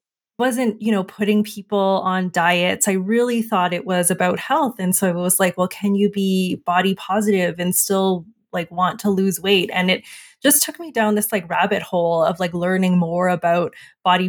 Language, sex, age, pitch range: English, female, 20-39, 180-215 Hz